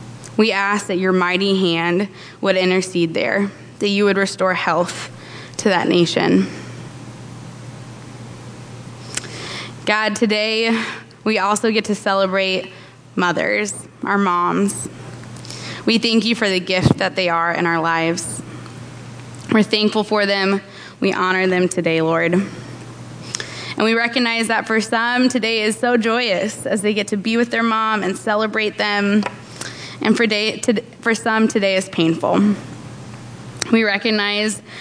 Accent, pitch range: American, 185-220 Hz